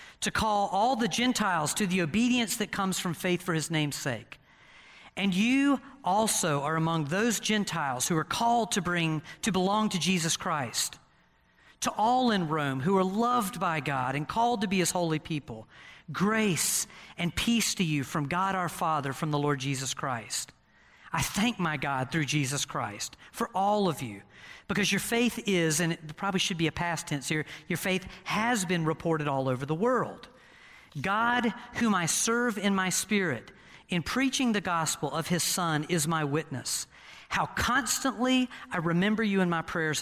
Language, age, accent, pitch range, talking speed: English, 40-59, American, 155-210 Hz, 180 wpm